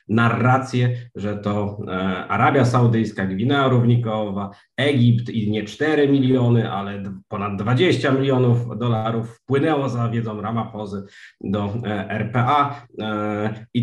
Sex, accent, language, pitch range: male, native, Polish, 105-125 Hz